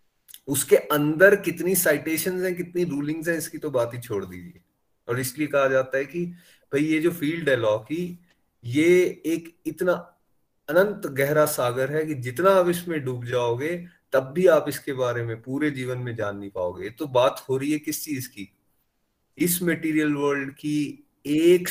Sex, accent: male, native